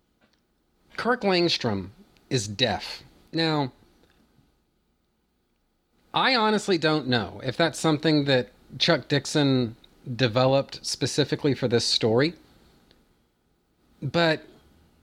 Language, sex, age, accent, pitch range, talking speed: English, male, 30-49, American, 115-155 Hz, 85 wpm